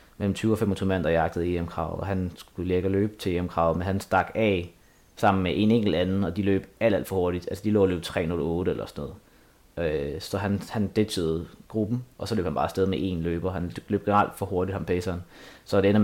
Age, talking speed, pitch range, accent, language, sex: 20-39, 245 wpm, 95-110 Hz, native, Danish, male